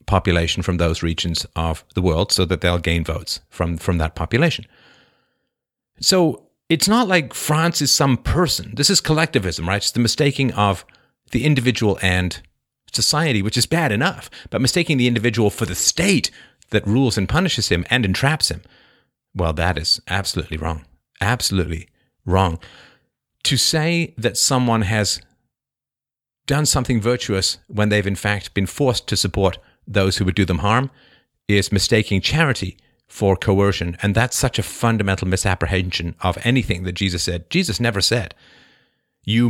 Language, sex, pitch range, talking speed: English, male, 90-125 Hz, 160 wpm